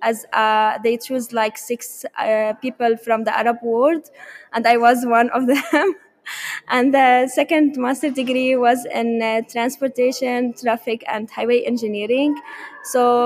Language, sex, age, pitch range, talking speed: English, female, 20-39, 235-275 Hz, 145 wpm